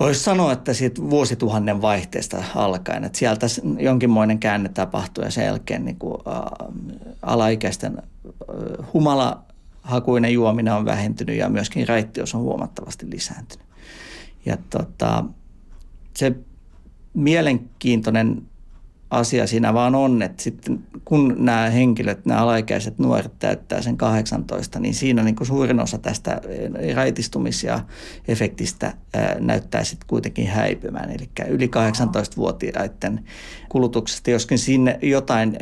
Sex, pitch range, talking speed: male, 110-125 Hz, 110 wpm